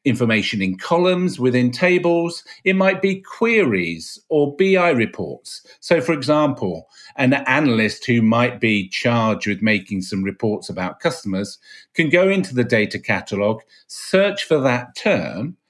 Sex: male